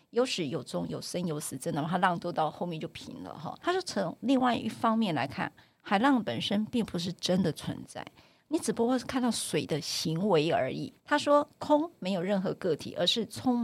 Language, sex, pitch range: Chinese, female, 190-270 Hz